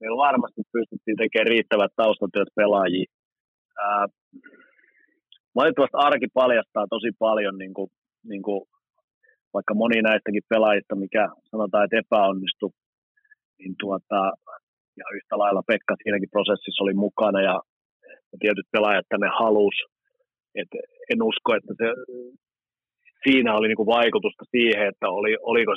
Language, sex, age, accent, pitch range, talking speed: Finnish, male, 30-49, native, 105-130 Hz, 125 wpm